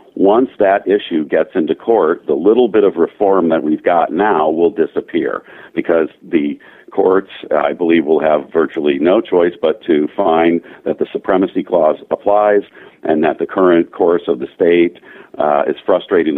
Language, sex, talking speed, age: English, male, 170 wpm, 50-69